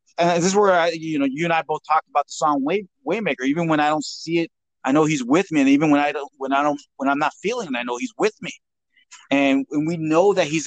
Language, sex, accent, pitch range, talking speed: English, male, American, 150-220 Hz, 290 wpm